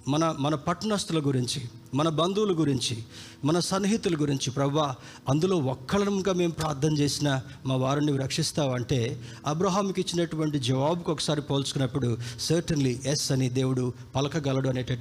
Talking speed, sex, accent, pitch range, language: 120 wpm, male, native, 130-180 Hz, Telugu